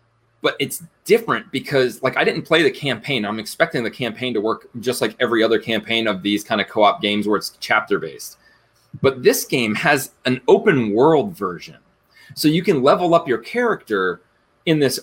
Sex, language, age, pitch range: male, English, 20-39, 105-135 Hz